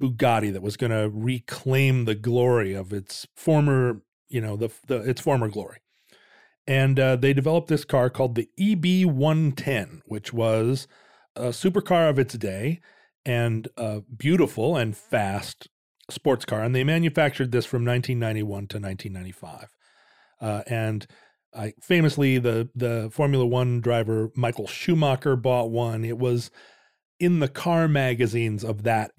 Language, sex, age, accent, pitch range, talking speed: English, male, 40-59, American, 110-140 Hz, 145 wpm